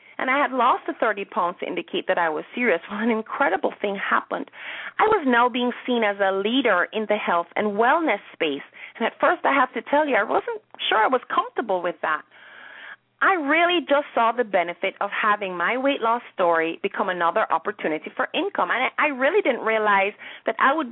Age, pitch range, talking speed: 30-49, 205-285 Hz, 210 wpm